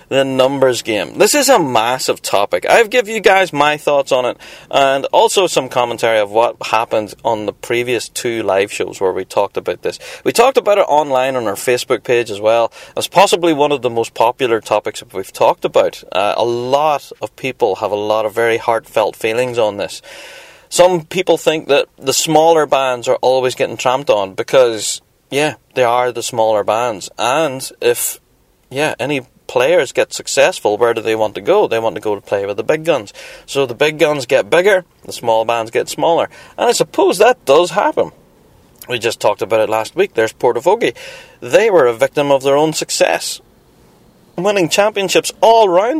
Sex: male